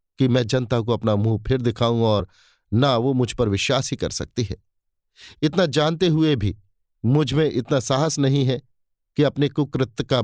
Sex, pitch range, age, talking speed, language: male, 115-150 Hz, 50-69, 190 wpm, Hindi